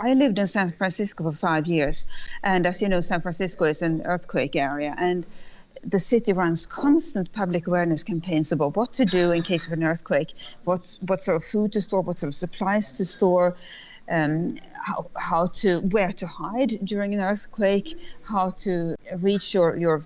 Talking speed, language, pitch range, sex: 190 wpm, English, 165-210 Hz, female